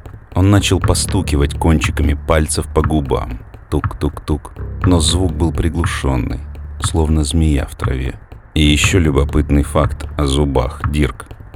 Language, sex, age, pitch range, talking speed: Russian, male, 40-59, 75-90 Hz, 120 wpm